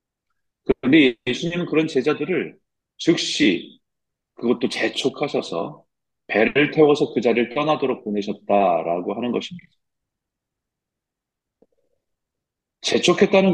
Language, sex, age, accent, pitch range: Korean, male, 40-59, native, 110-155 Hz